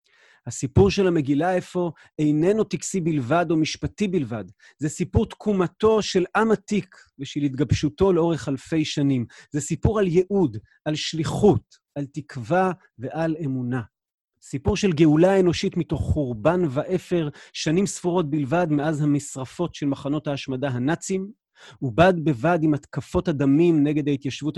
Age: 30-49